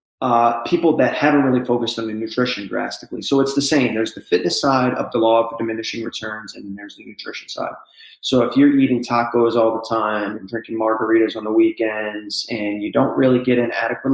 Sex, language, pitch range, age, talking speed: male, English, 115-125 Hz, 20-39, 215 wpm